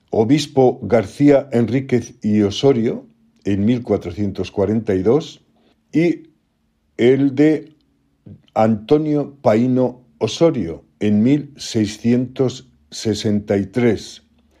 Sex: male